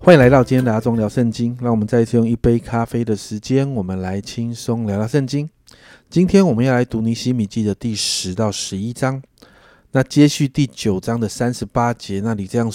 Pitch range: 105-130 Hz